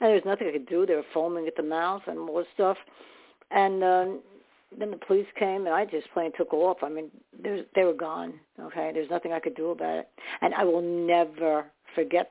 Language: English